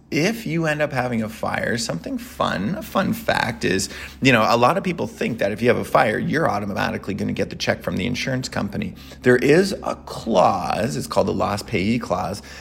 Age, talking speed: 30-49, 225 wpm